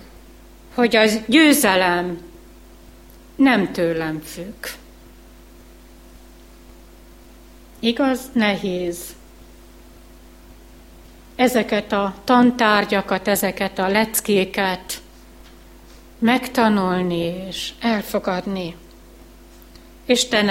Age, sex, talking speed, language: 60-79, female, 55 wpm, Hungarian